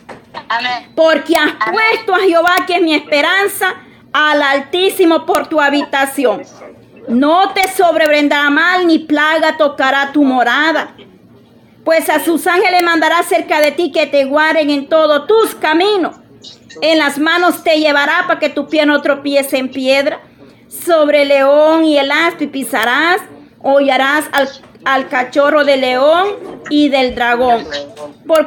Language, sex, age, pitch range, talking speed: Spanish, female, 40-59, 285-345 Hz, 145 wpm